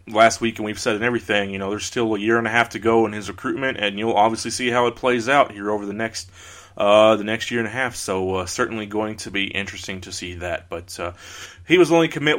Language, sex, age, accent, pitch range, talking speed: English, male, 30-49, American, 100-120 Hz, 275 wpm